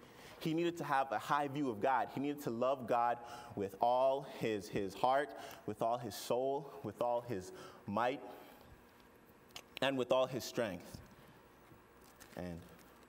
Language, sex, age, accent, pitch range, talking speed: English, male, 20-39, American, 105-140 Hz, 150 wpm